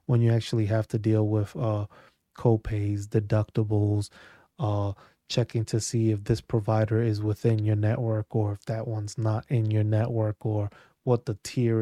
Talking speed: 170 wpm